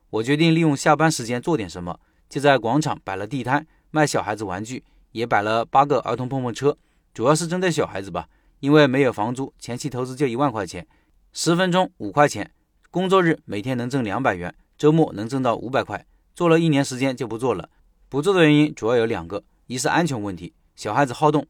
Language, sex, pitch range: Chinese, male, 115-155 Hz